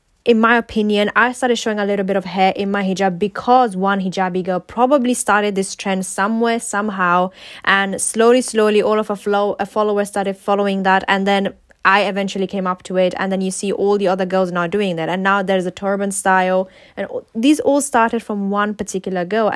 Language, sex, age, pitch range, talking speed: English, female, 10-29, 190-220 Hz, 210 wpm